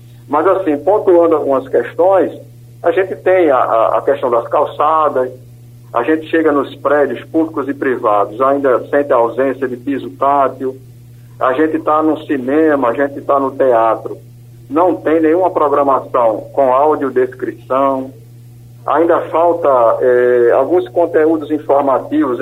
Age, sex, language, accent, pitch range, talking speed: 50-69, male, Portuguese, Brazilian, 125-175 Hz, 135 wpm